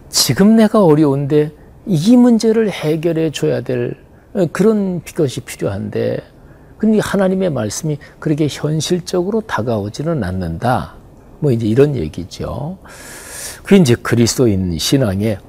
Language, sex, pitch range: Korean, male, 115-155 Hz